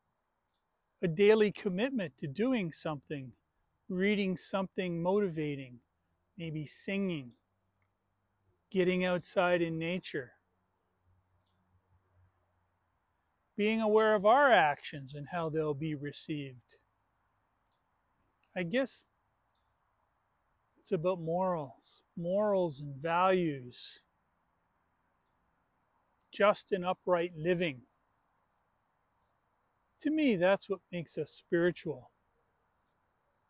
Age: 40-59